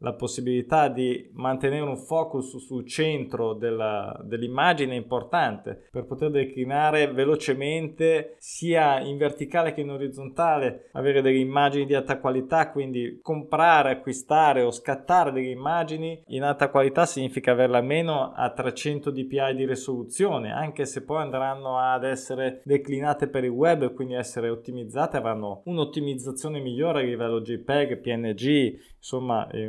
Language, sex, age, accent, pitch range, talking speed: Italian, male, 20-39, native, 125-155 Hz, 135 wpm